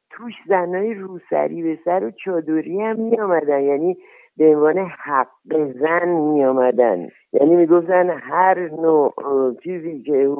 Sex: male